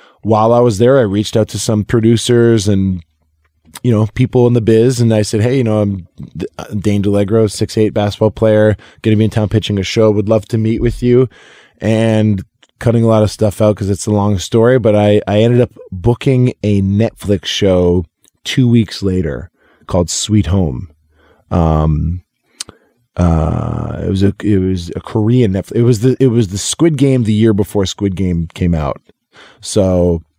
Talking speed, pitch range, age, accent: 190 wpm, 100-115 Hz, 20-39, American